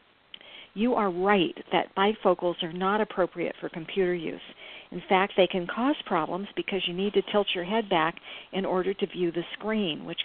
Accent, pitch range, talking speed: American, 175-215 Hz, 185 wpm